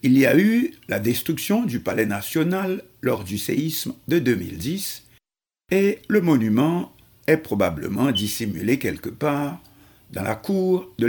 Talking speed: 140 wpm